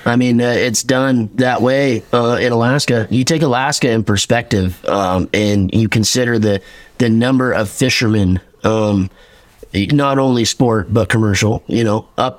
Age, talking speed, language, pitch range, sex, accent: 20-39, 160 wpm, English, 100-120 Hz, male, American